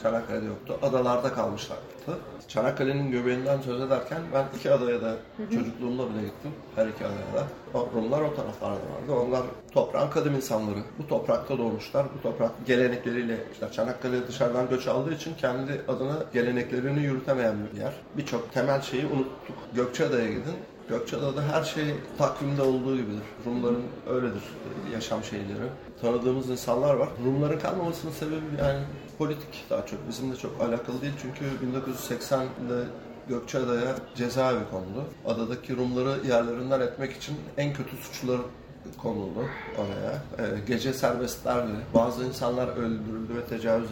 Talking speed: 135 wpm